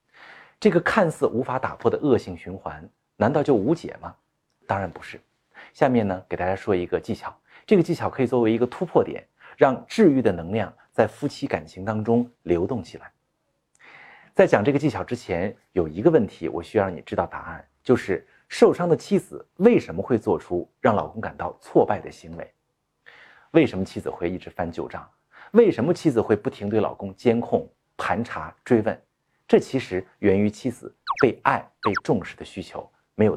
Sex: male